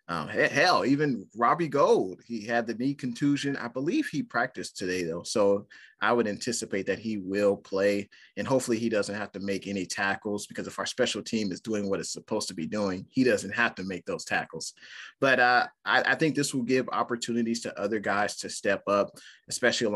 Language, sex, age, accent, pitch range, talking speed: English, male, 30-49, American, 100-125 Hz, 205 wpm